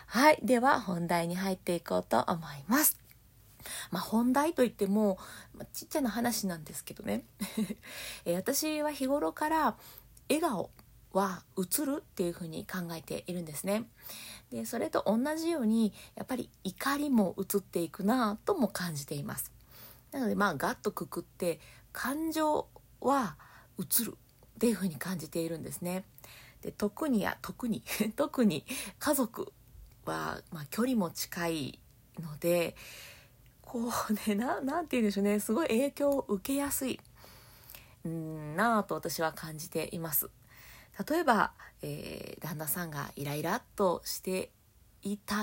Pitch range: 170-245 Hz